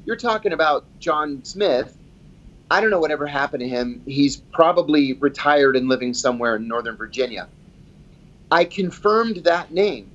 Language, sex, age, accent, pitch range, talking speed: English, male, 30-49, American, 140-175 Hz, 150 wpm